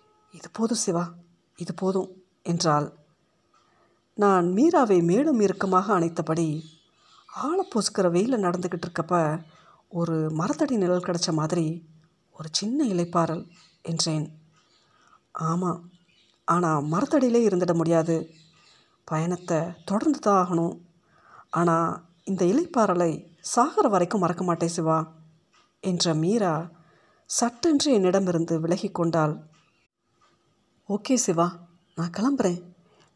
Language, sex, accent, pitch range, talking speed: Tamil, female, native, 165-205 Hz, 85 wpm